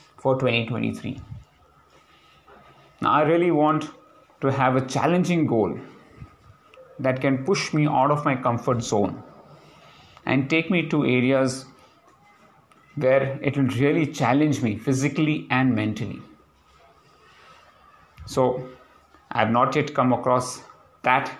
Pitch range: 120-145 Hz